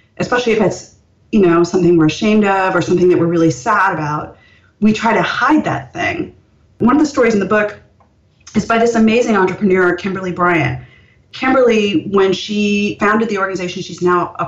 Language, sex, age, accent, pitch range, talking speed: English, female, 30-49, American, 175-230 Hz, 185 wpm